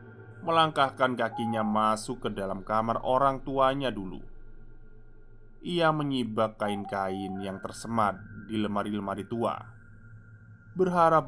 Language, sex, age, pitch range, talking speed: Indonesian, male, 20-39, 110-130 Hz, 95 wpm